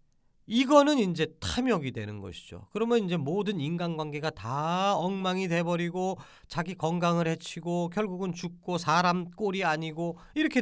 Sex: male